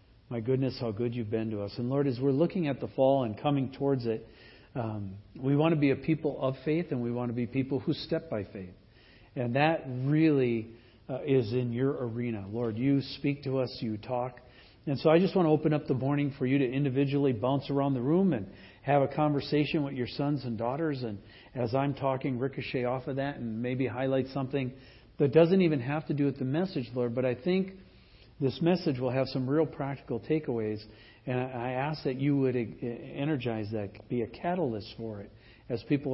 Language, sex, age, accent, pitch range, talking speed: English, male, 50-69, American, 120-155 Hz, 215 wpm